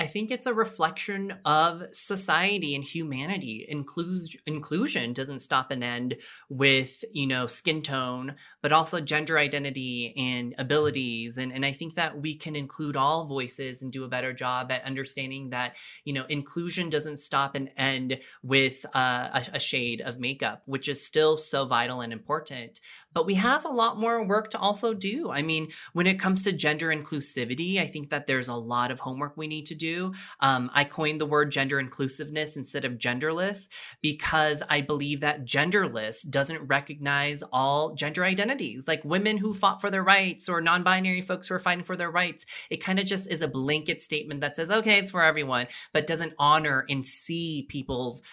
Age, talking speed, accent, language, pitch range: 20-39, 180 wpm, American, English, 135-170 Hz